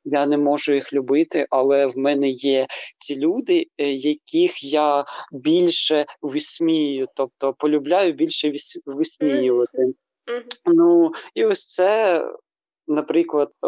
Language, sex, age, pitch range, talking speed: Ukrainian, male, 20-39, 145-180 Hz, 105 wpm